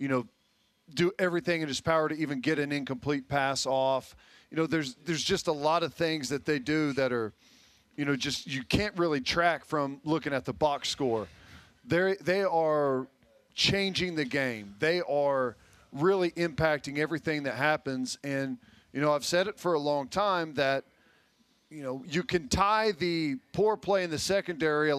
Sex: male